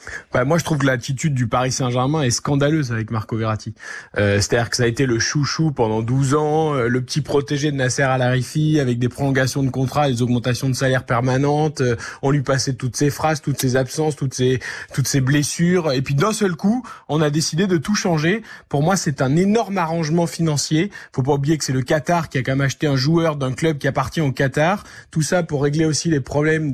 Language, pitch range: French, 135-180 Hz